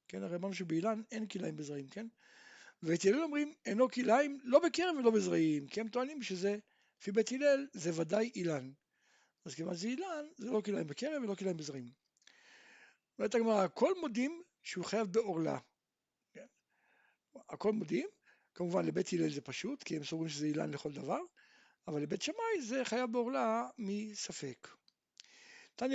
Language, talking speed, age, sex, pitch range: Hebrew, 95 wpm, 60-79, male, 180-270 Hz